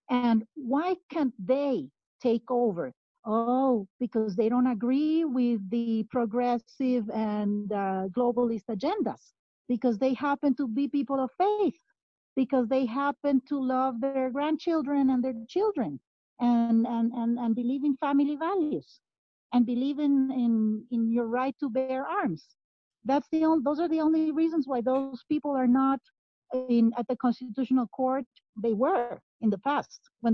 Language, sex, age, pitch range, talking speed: English, female, 50-69, 235-285 Hz, 155 wpm